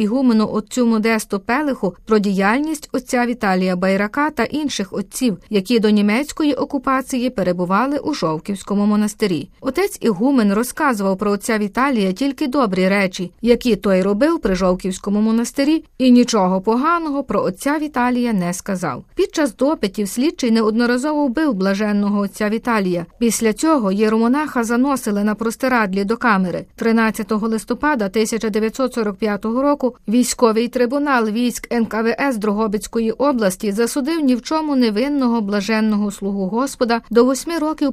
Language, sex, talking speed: Ukrainian, female, 125 wpm